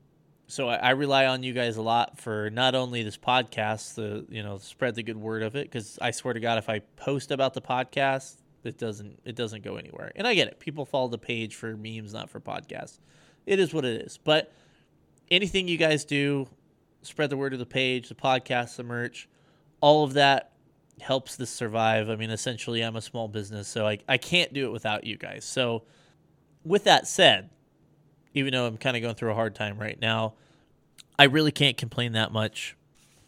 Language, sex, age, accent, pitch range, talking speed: English, male, 20-39, American, 110-140 Hz, 210 wpm